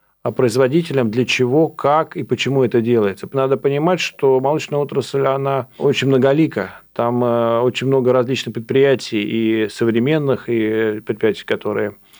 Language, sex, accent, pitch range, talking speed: Russian, male, native, 120-140 Hz, 135 wpm